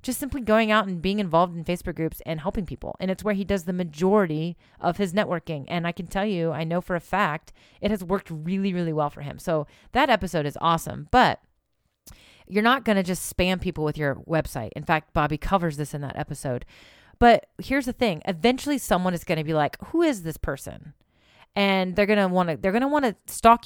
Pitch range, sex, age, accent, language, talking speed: 150-195 Hz, female, 30-49, American, English, 235 wpm